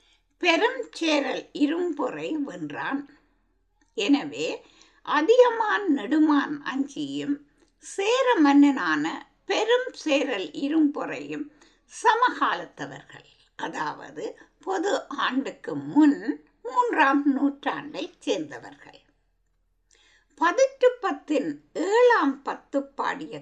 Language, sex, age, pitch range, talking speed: Tamil, female, 60-79, 275-415 Hz, 65 wpm